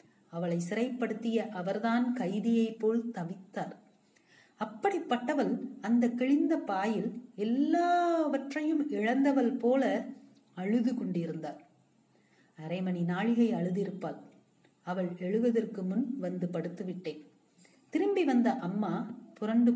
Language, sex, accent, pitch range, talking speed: Tamil, female, native, 185-250 Hz, 75 wpm